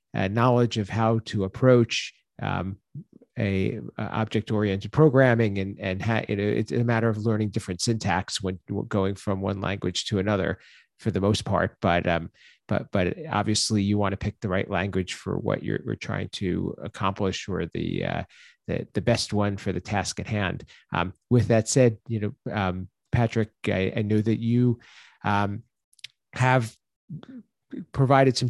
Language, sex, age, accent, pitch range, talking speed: English, male, 40-59, American, 100-125 Hz, 170 wpm